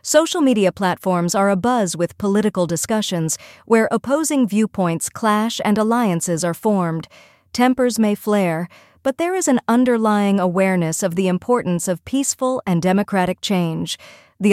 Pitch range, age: 180-230 Hz, 40-59